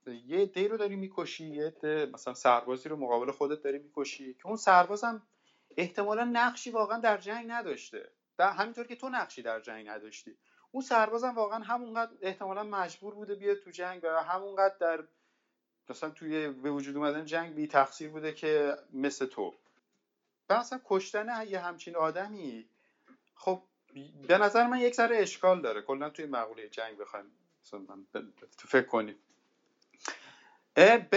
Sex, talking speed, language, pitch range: male, 155 wpm, Persian, 140-205 Hz